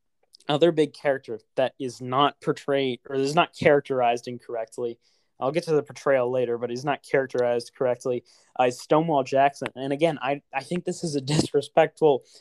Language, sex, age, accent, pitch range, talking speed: English, male, 20-39, American, 130-155 Hz, 175 wpm